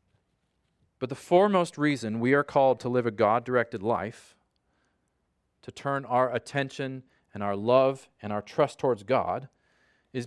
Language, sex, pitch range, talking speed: English, male, 115-150 Hz, 145 wpm